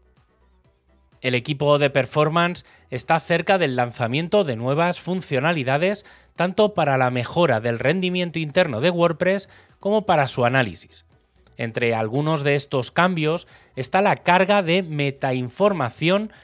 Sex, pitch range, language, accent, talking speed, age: male, 125-180 Hz, Spanish, Spanish, 125 wpm, 30-49